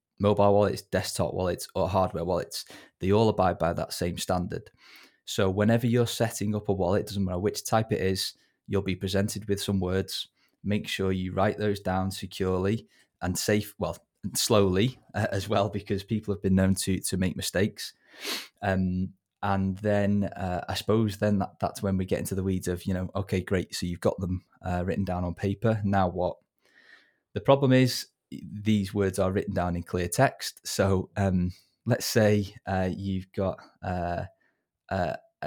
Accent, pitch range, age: British, 95-105 Hz, 20-39